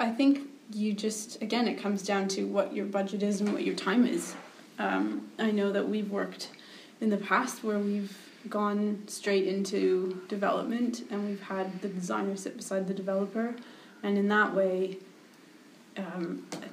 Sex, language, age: female, English, 20-39